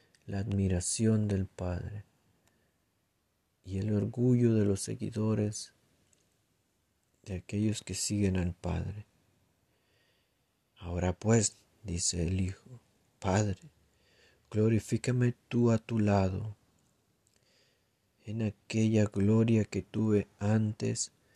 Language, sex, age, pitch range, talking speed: Spanish, male, 40-59, 95-115 Hz, 95 wpm